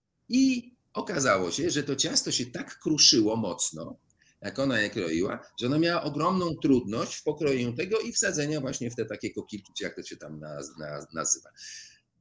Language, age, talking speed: Polish, 40-59, 165 wpm